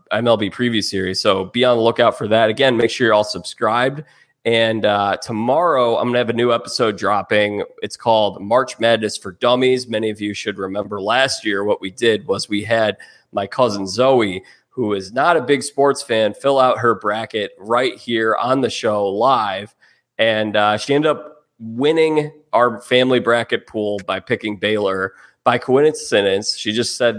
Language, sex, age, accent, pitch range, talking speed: English, male, 20-39, American, 110-135 Hz, 185 wpm